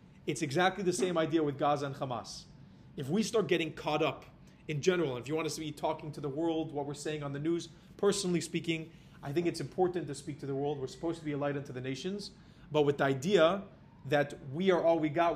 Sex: male